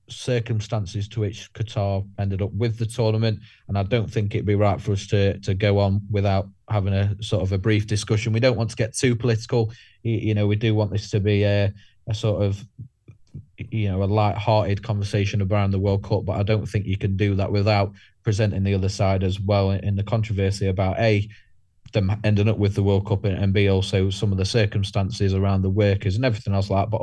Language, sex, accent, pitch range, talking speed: English, male, British, 100-110 Hz, 225 wpm